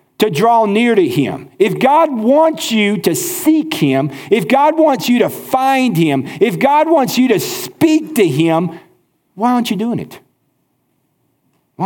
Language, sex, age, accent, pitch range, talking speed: English, male, 50-69, American, 160-255 Hz, 165 wpm